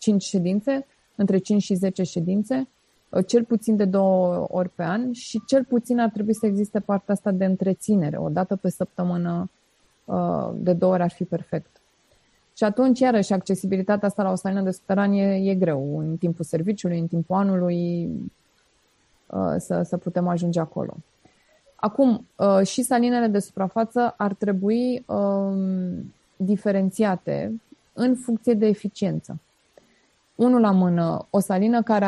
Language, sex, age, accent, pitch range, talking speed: Romanian, female, 20-39, native, 180-220 Hz, 140 wpm